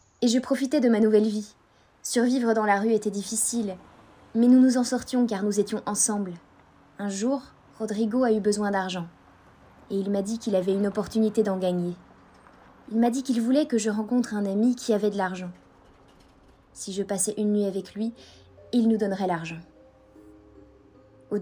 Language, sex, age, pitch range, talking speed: English, female, 20-39, 185-230 Hz, 180 wpm